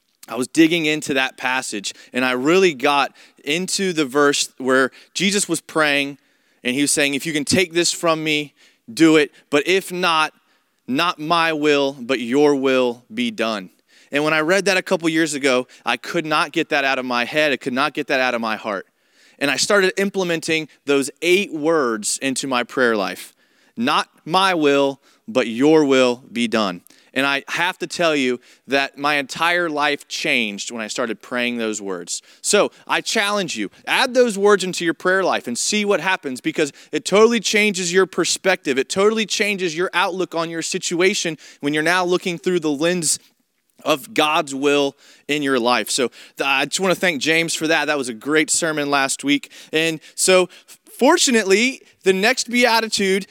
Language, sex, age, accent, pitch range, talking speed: English, male, 30-49, American, 140-190 Hz, 190 wpm